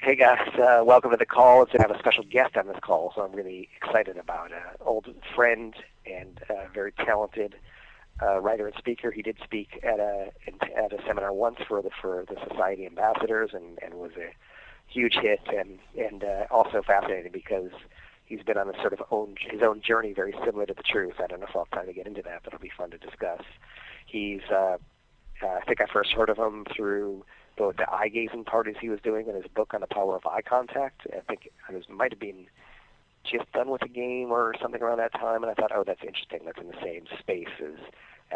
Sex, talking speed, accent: male, 230 wpm, American